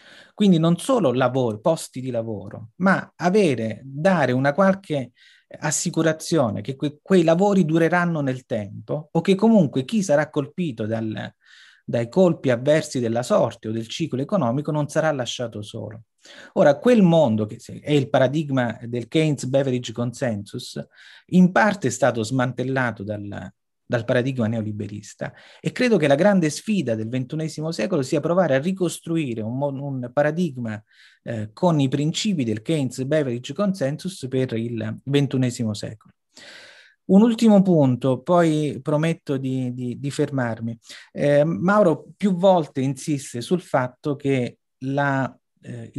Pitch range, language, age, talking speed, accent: 120-165 Hz, Italian, 30-49, 135 wpm, native